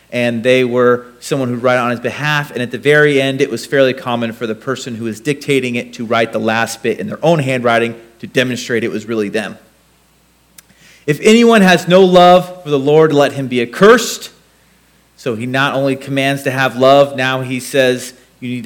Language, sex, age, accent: English, male, 30-49, American